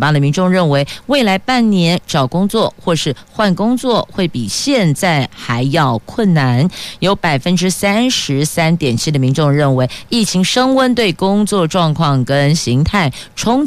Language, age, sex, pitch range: Chinese, 50-69, female, 140-200 Hz